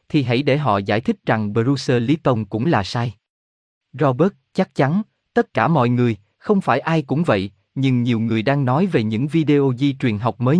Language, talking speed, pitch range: Vietnamese, 205 wpm, 115-155 Hz